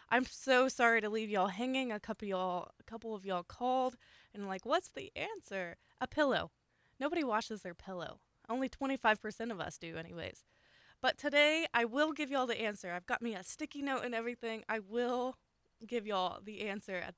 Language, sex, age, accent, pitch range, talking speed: English, female, 20-39, American, 190-255 Hz, 185 wpm